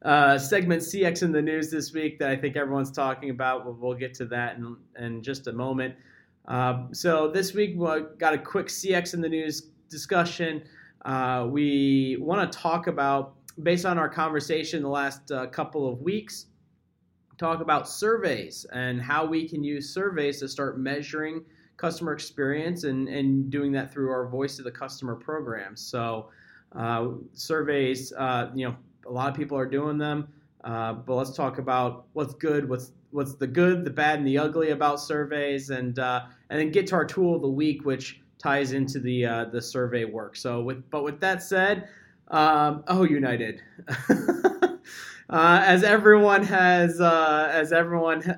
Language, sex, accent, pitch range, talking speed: English, male, American, 130-160 Hz, 180 wpm